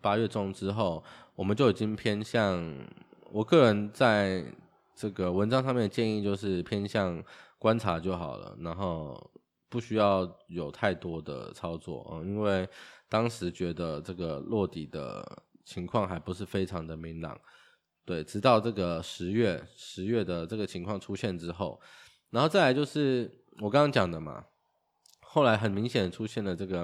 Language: Chinese